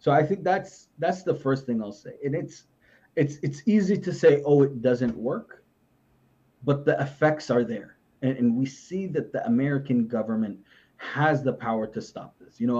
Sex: male